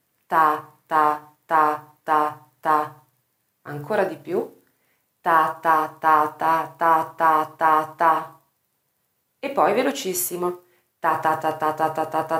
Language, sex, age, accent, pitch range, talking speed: Italian, female, 30-49, native, 135-165 Hz, 110 wpm